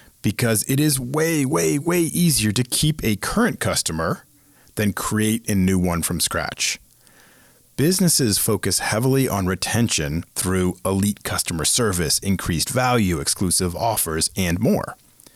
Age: 40-59